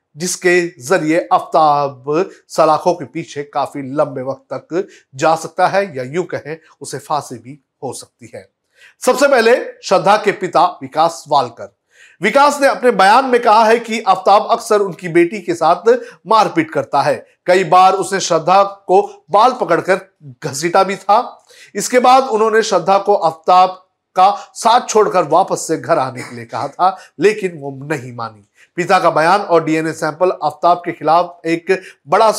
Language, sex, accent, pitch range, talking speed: Hindi, male, native, 155-210 Hz, 165 wpm